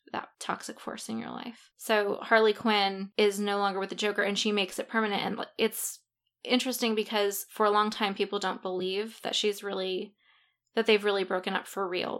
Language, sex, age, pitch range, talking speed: English, female, 20-39, 195-220 Hz, 200 wpm